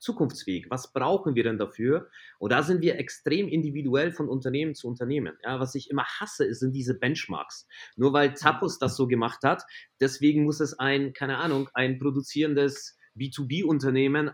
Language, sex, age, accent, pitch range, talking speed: German, male, 30-49, German, 120-150 Hz, 170 wpm